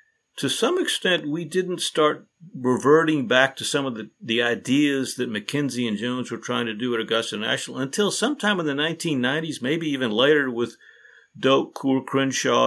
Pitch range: 115-150 Hz